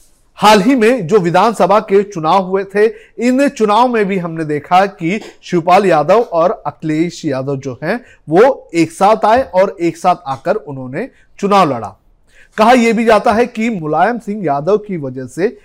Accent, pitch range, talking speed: native, 160-215 Hz, 175 wpm